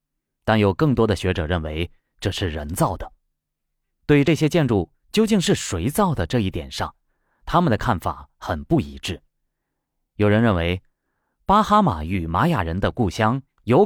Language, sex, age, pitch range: Chinese, male, 30-49, 85-135 Hz